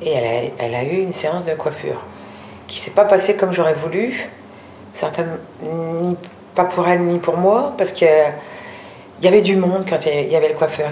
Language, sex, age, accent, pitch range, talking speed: French, female, 50-69, French, 175-220 Hz, 210 wpm